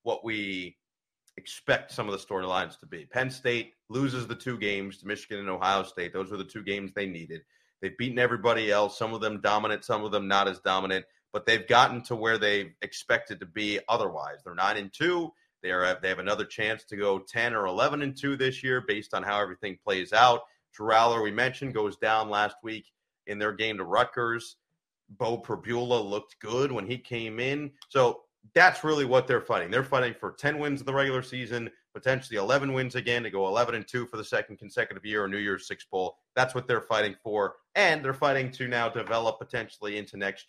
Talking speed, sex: 215 wpm, male